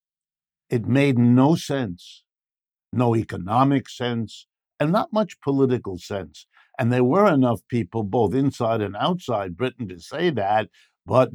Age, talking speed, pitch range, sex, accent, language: 60-79, 135 wpm, 115-135 Hz, male, American, English